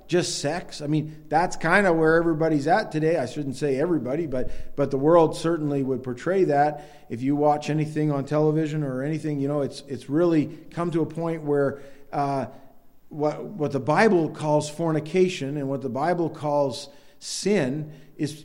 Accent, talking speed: American, 180 wpm